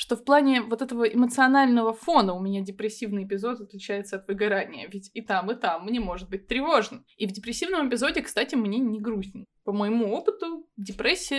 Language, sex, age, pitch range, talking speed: Russian, female, 20-39, 200-240 Hz, 185 wpm